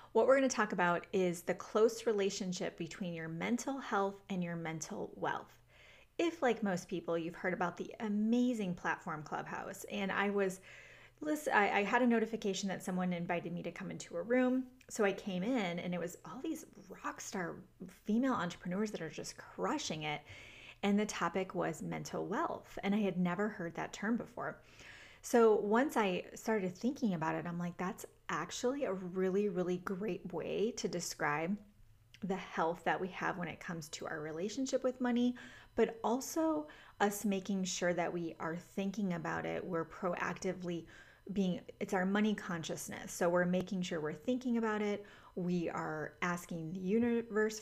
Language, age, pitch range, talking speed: English, 30-49, 175-215 Hz, 175 wpm